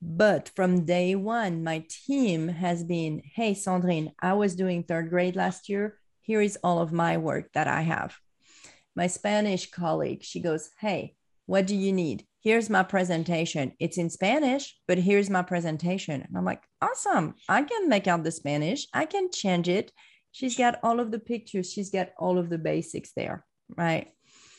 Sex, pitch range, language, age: female, 165-200 Hz, English, 40-59